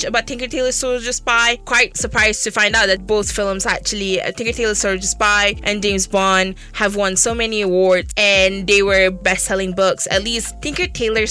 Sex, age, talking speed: female, 20-39, 185 wpm